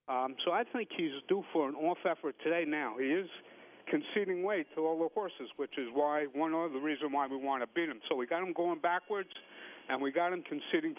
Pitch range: 140-190 Hz